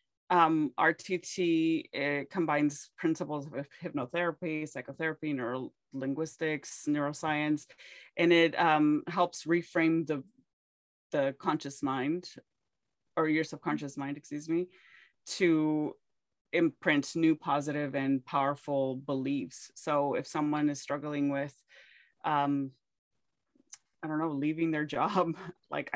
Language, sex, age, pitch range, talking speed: English, female, 30-49, 145-165 Hz, 110 wpm